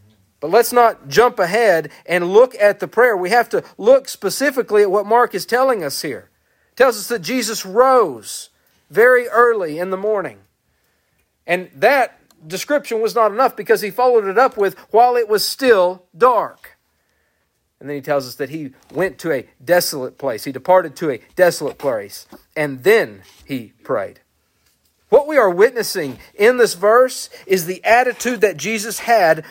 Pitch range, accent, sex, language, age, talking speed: 175-240 Hz, American, male, English, 50-69, 175 wpm